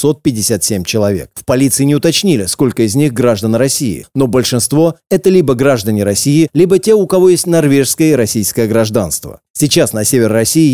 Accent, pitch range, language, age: native, 115-150 Hz, Russian, 30-49